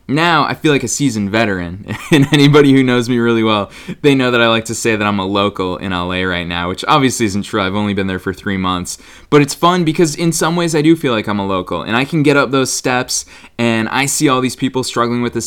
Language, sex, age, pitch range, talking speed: English, male, 20-39, 100-135 Hz, 270 wpm